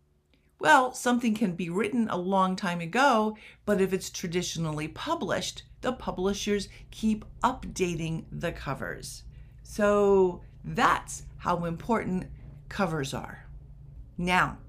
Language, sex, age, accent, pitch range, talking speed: English, female, 50-69, American, 165-220 Hz, 110 wpm